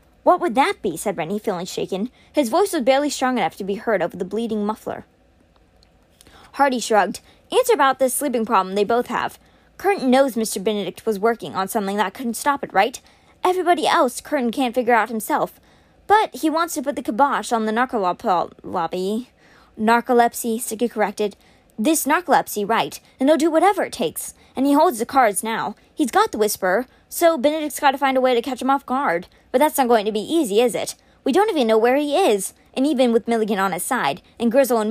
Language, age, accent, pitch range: English, 20-39, American, 220-290 Hz